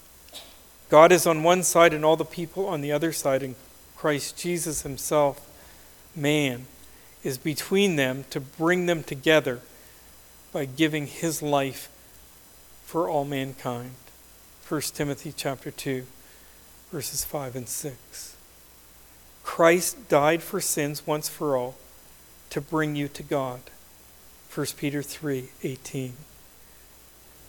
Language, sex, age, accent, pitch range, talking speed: English, male, 50-69, American, 135-170 Hz, 120 wpm